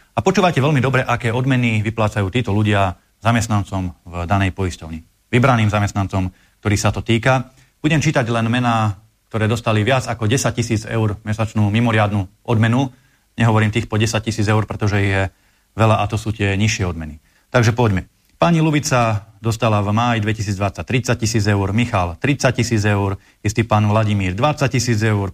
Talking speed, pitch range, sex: 165 wpm, 100-120 Hz, male